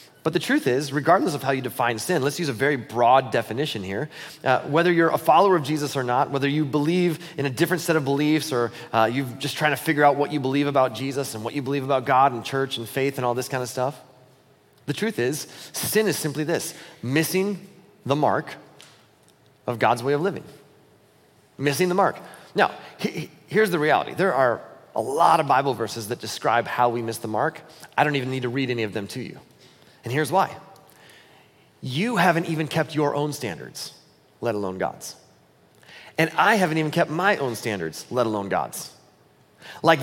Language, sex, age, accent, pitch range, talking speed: English, male, 30-49, American, 130-165 Hz, 205 wpm